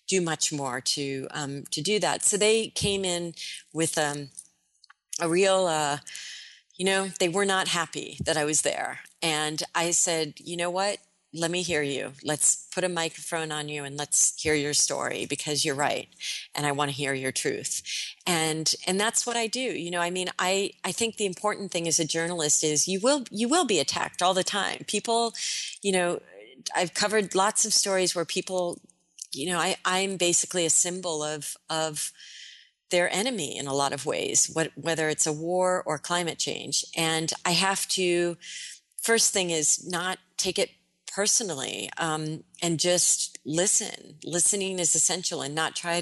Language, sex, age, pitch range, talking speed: English, female, 30-49, 155-185 Hz, 185 wpm